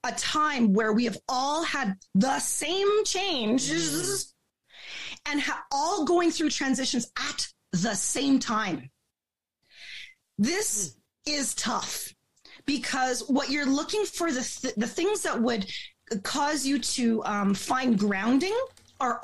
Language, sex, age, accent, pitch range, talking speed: English, female, 30-49, American, 215-290 Hz, 130 wpm